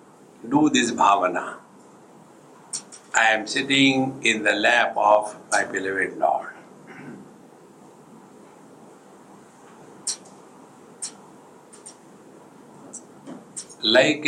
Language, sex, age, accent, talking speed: English, male, 60-79, Indian, 60 wpm